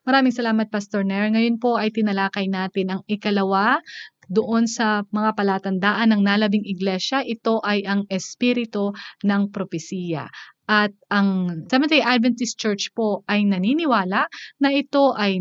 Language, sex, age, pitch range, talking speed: Filipino, female, 20-39, 195-245 Hz, 135 wpm